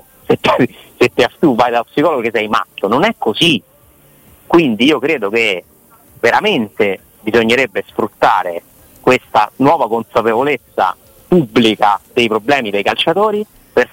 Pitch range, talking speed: 115-175 Hz, 120 wpm